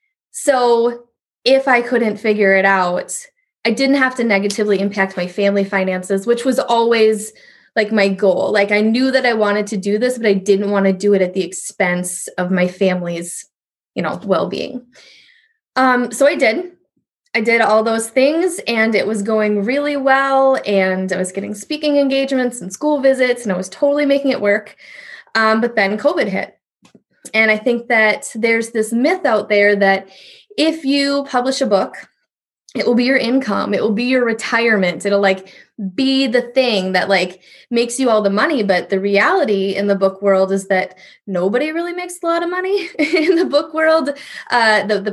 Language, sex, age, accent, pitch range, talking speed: English, female, 20-39, American, 200-275 Hz, 190 wpm